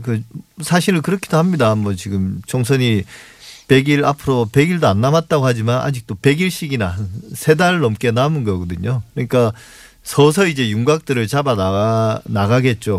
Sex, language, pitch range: male, Korean, 110-140 Hz